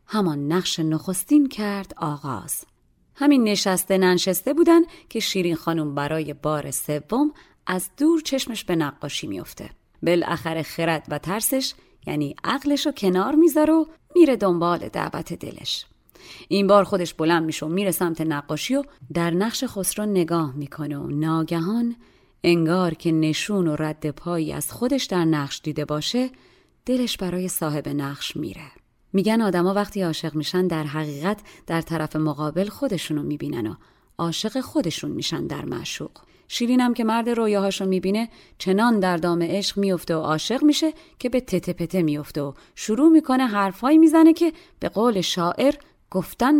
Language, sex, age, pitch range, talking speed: Persian, female, 30-49, 160-245 Hz, 145 wpm